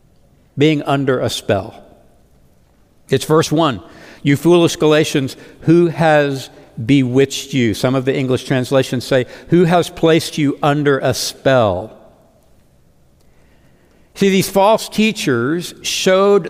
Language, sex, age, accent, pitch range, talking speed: English, male, 60-79, American, 130-175 Hz, 115 wpm